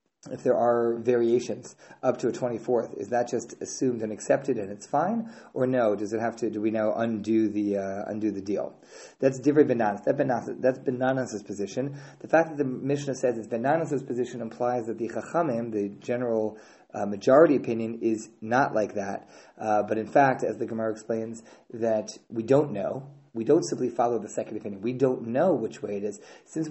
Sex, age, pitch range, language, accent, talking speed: male, 30-49, 110-135 Hz, English, American, 200 wpm